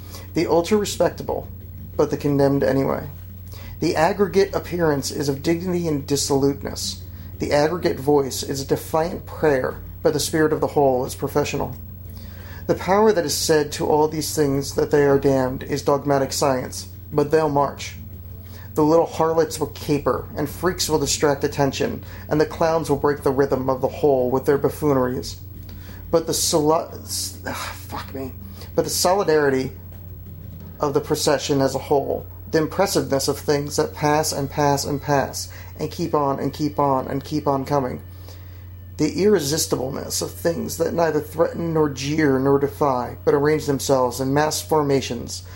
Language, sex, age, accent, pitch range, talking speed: English, male, 40-59, American, 95-150 Hz, 160 wpm